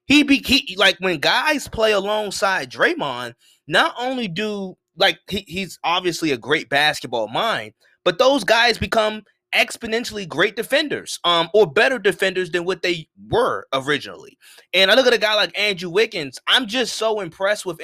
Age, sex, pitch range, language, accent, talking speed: 20-39, male, 165-220 Hz, English, American, 170 wpm